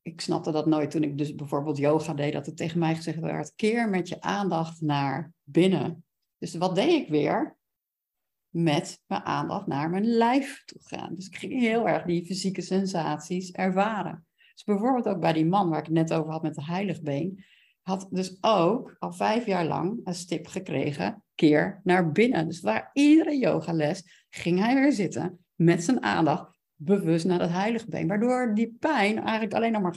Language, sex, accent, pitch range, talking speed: Dutch, female, Dutch, 165-200 Hz, 190 wpm